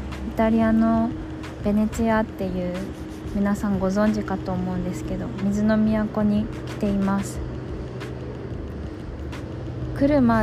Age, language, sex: 20-39, Japanese, female